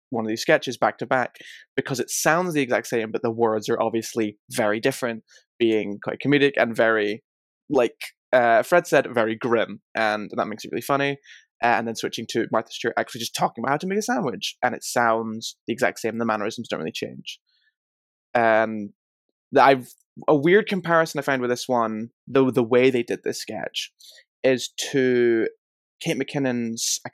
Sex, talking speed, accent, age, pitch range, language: male, 190 wpm, British, 20-39, 110-130 Hz, English